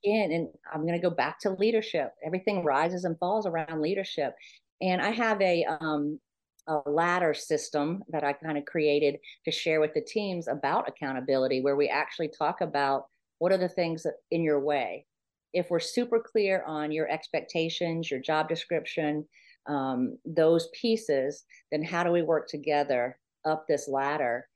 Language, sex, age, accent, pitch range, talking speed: English, female, 40-59, American, 145-175 Hz, 165 wpm